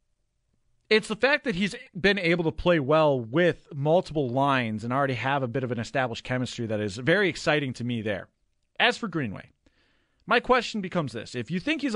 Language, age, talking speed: English, 40-59, 200 wpm